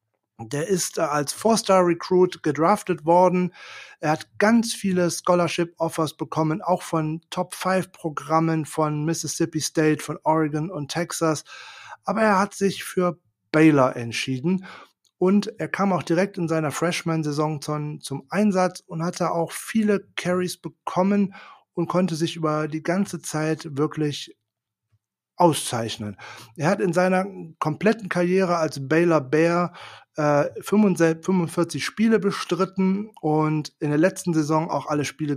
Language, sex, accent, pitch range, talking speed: German, male, German, 150-185 Hz, 130 wpm